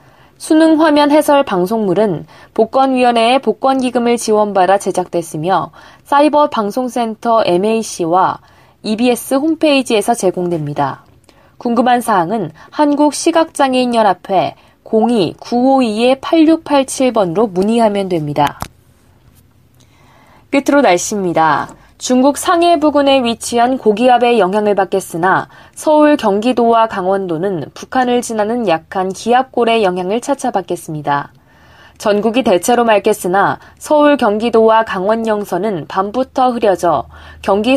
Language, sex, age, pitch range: Korean, female, 20-39, 185-265 Hz